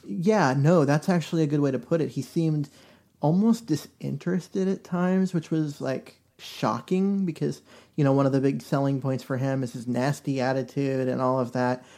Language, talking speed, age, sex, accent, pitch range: English, 195 wpm, 30-49, male, American, 130-150 Hz